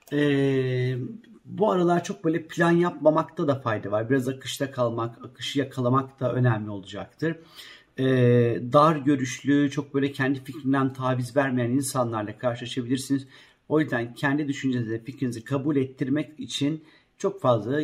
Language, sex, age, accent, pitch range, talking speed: Turkish, male, 50-69, native, 120-150 Hz, 130 wpm